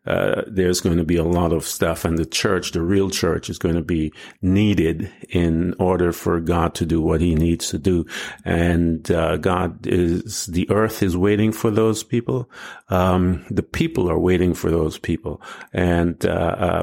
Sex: male